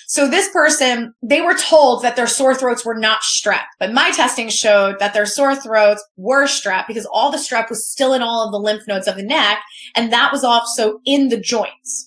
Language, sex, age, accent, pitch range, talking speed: English, female, 20-39, American, 220-280 Hz, 225 wpm